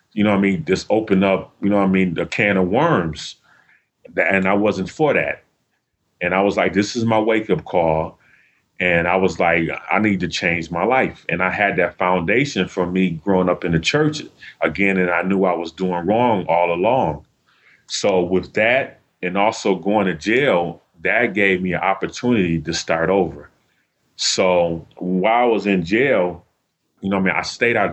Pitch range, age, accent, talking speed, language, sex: 85-100 Hz, 30-49, American, 200 wpm, English, male